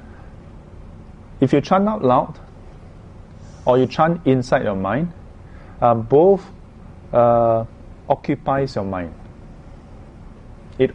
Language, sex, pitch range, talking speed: English, male, 100-140 Hz, 100 wpm